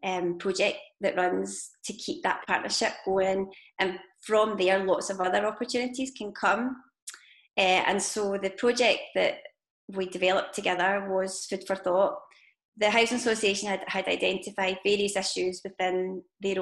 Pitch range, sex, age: 190-230 Hz, female, 20-39